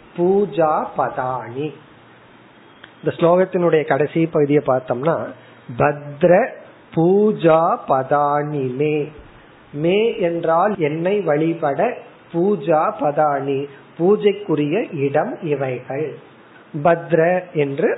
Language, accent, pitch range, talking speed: Tamil, native, 145-185 Hz, 40 wpm